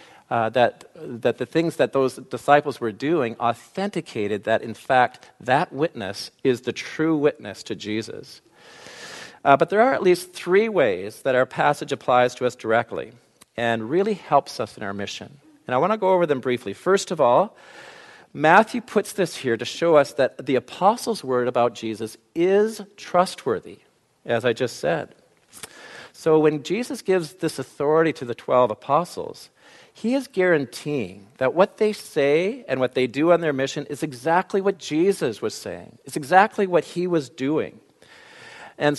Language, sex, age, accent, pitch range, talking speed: English, male, 50-69, American, 125-180 Hz, 170 wpm